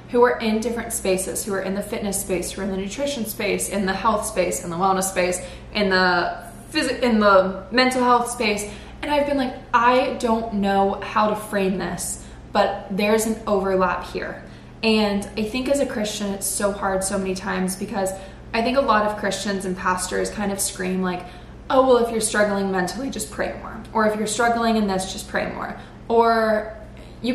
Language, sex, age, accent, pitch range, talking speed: English, female, 20-39, American, 195-230 Hz, 205 wpm